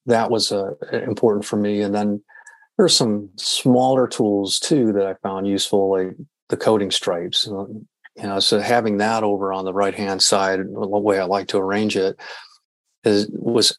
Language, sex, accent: English, male, American